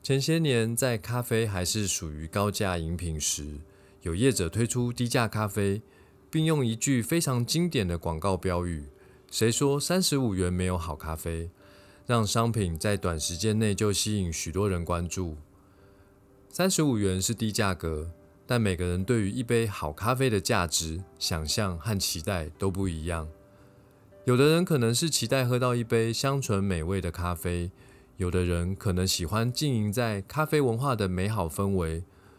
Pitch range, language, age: 90-120 Hz, Chinese, 20-39